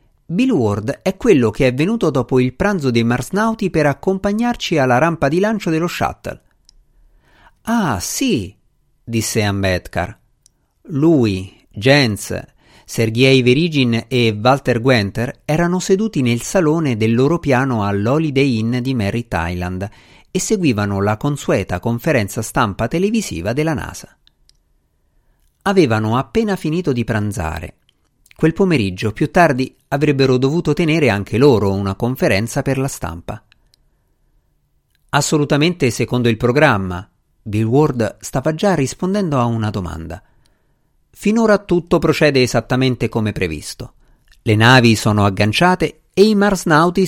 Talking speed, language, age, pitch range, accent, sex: 120 wpm, Italian, 50-69, 110-155 Hz, native, male